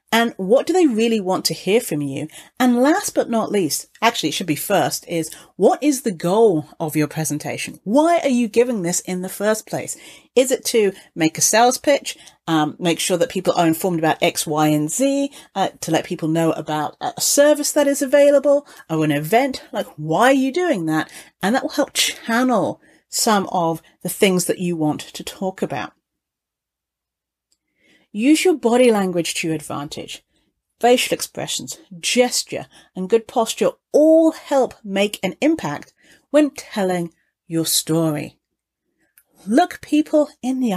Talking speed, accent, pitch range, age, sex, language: 170 wpm, British, 170-270 Hz, 40-59, female, English